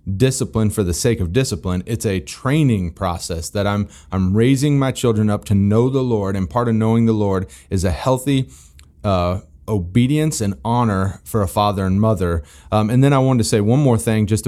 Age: 30-49